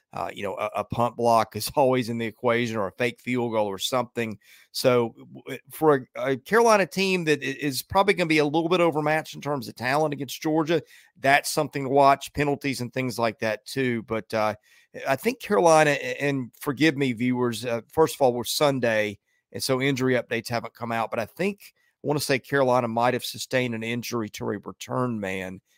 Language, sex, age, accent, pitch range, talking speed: English, male, 30-49, American, 115-140 Hz, 210 wpm